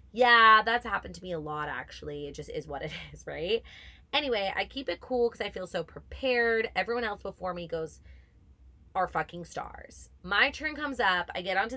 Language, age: English, 20-39